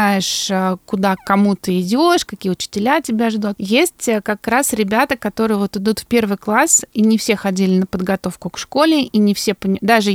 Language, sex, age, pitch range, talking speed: Russian, female, 20-39, 195-235 Hz, 185 wpm